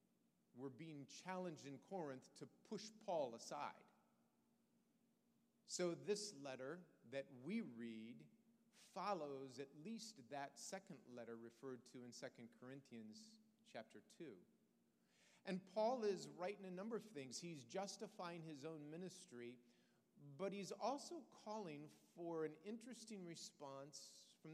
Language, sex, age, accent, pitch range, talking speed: English, male, 40-59, American, 140-220 Hz, 120 wpm